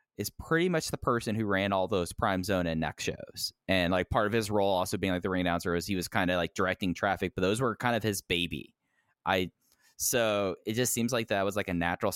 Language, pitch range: English, 95-120 Hz